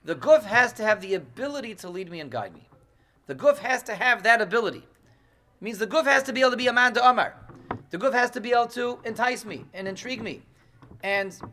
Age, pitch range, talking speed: 40-59, 130-220 Hz, 245 wpm